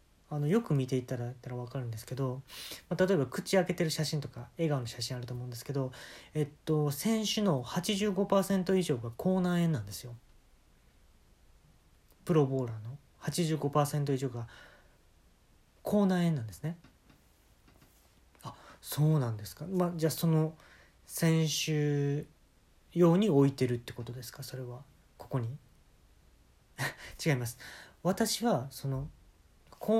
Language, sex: Japanese, male